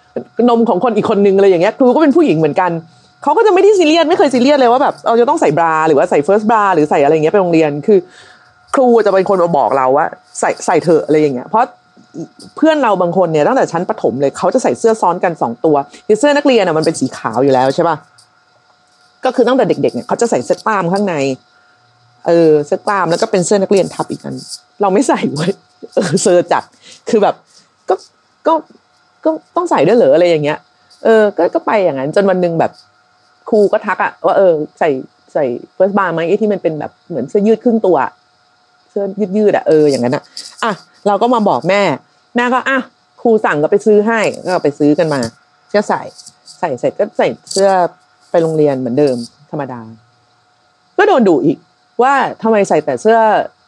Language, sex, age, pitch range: Thai, female, 30-49, 155-225 Hz